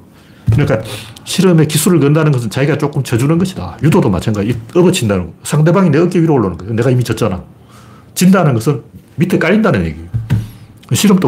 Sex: male